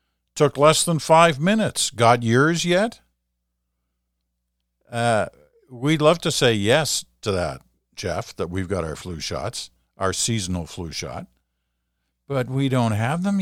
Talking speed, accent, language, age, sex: 145 wpm, American, English, 50-69, male